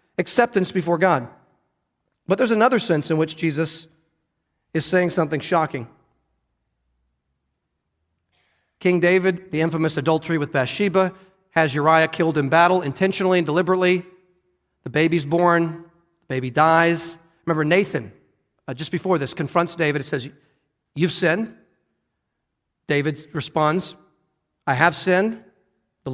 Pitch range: 155-200 Hz